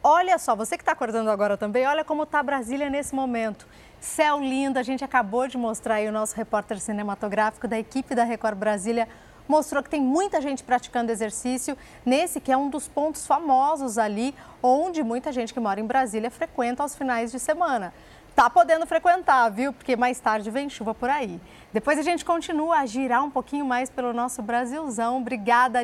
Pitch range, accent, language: 240-315 Hz, Brazilian, Portuguese